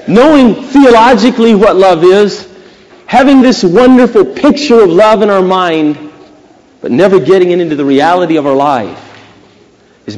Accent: American